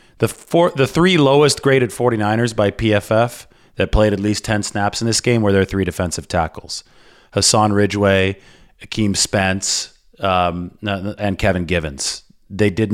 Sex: male